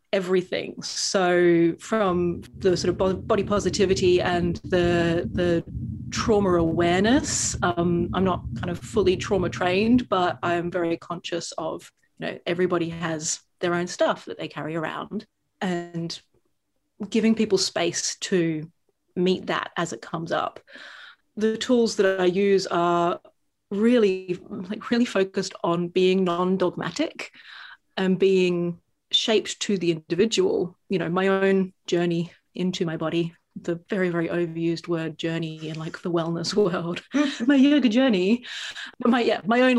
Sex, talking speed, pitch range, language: female, 140 wpm, 175-215 Hz, English